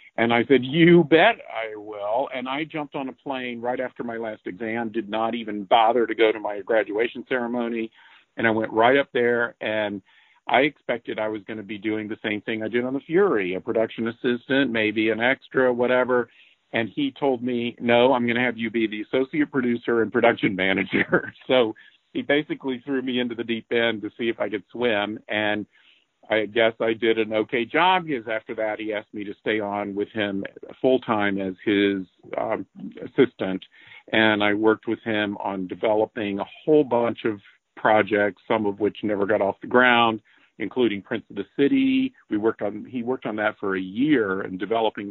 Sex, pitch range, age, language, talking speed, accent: male, 105-125 Hz, 50-69, English, 200 wpm, American